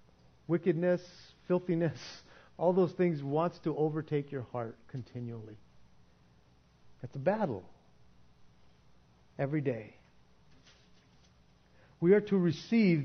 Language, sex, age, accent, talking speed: English, male, 50-69, American, 90 wpm